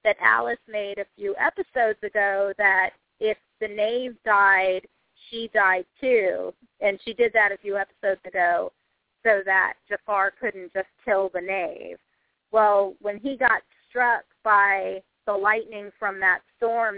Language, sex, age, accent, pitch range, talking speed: English, female, 30-49, American, 190-220 Hz, 150 wpm